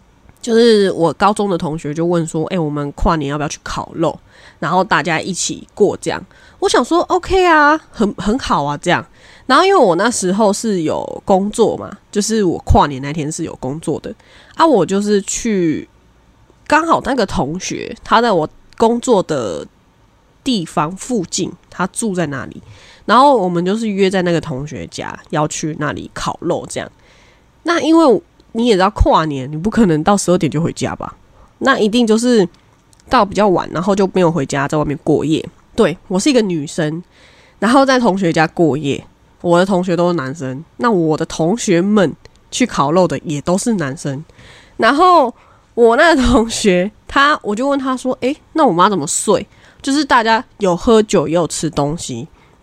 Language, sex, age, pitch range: Chinese, female, 20-39, 160-230 Hz